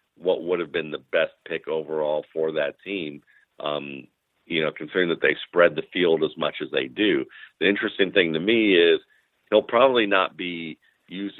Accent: American